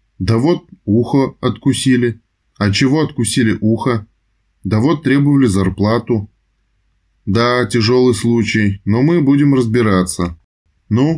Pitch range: 95-130 Hz